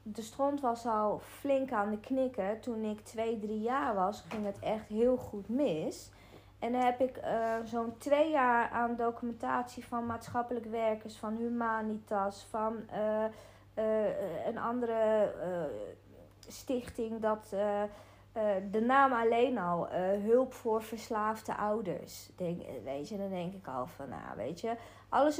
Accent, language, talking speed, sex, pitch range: Dutch, Dutch, 160 wpm, female, 200-255 Hz